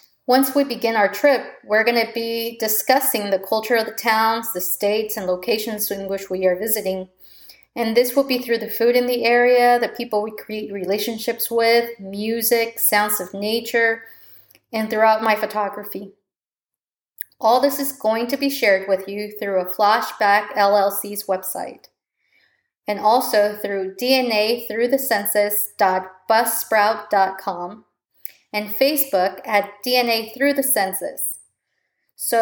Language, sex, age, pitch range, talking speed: English, female, 30-49, 205-245 Hz, 145 wpm